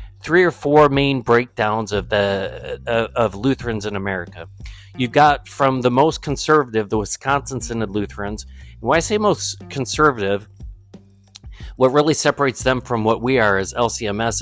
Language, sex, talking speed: English, male, 155 wpm